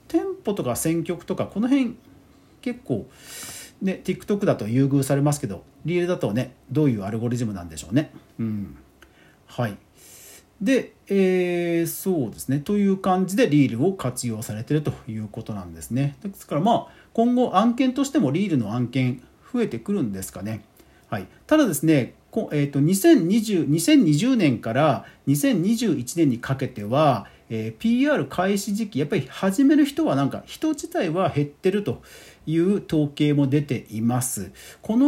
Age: 40-59